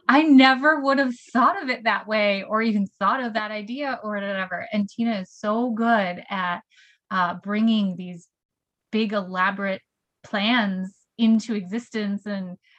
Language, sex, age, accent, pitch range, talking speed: English, female, 20-39, American, 190-235 Hz, 150 wpm